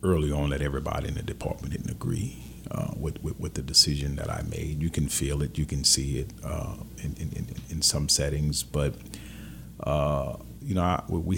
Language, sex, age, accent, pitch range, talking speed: English, male, 40-59, American, 70-80 Hz, 200 wpm